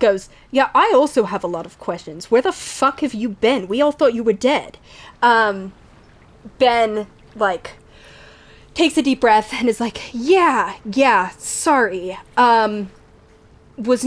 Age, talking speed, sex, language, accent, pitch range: 20-39, 155 wpm, female, English, American, 180-235 Hz